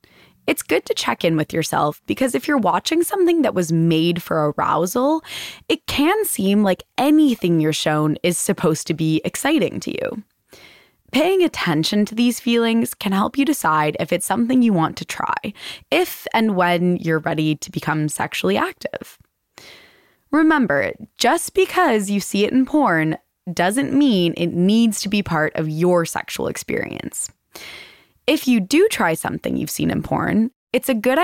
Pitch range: 170-260 Hz